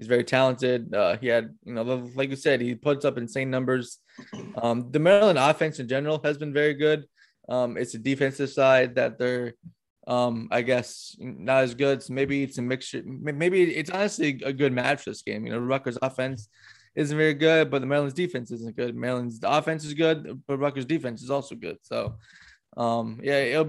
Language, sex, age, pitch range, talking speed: English, male, 20-39, 120-145 Hz, 205 wpm